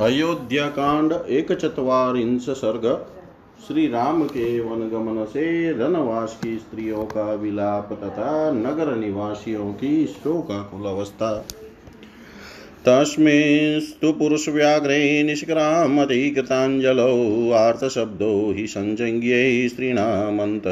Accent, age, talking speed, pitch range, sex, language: native, 40-59, 60 wpm, 110-150 Hz, male, Hindi